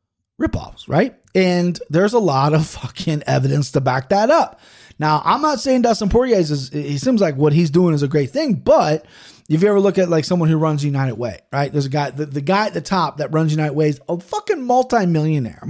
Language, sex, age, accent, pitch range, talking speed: English, male, 30-49, American, 150-195 Hz, 230 wpm